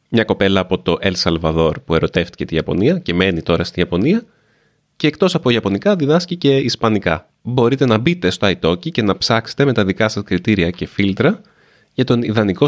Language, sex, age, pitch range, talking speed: Greek, male, 30-49, 90-130 Hz, 190 wpm